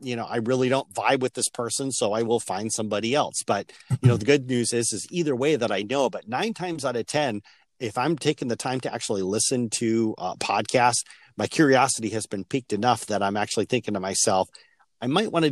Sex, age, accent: male, 40-59, American